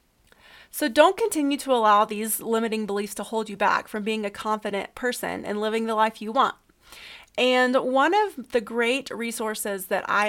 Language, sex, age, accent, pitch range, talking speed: English, female, 30-49, American, 195-235 Hz, 180 wpm